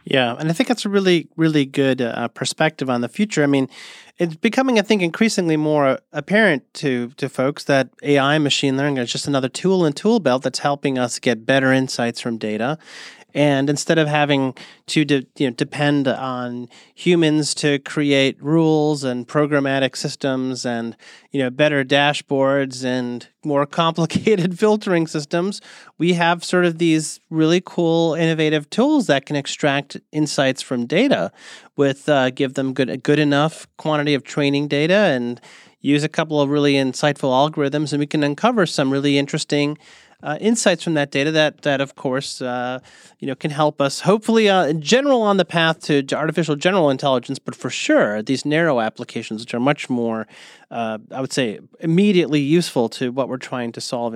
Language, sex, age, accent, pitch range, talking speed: English, male, 30-49, American, 135-165 Hz, 180 wpm